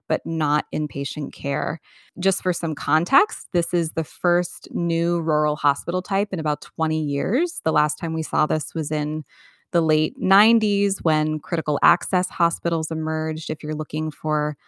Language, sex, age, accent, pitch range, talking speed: English, female, 20-39, American, 155-180 Hz, 165 wpm